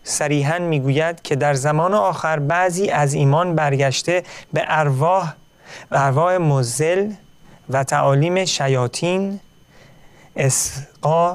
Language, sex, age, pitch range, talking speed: Persian, male, 40-59, 135-170 Hz, 100 wpm